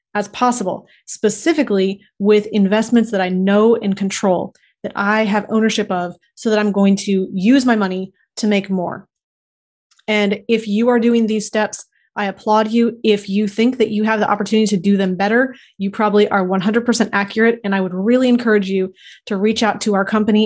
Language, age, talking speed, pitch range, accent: English, 30-49, 190 wpm, 195-225 Hz, American